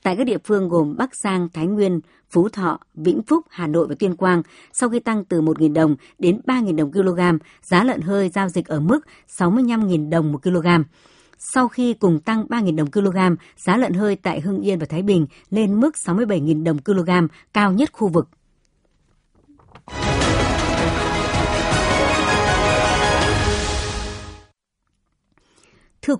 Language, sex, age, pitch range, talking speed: Vietnamese, male, 60-79, 160-210 Hz, 150 wpm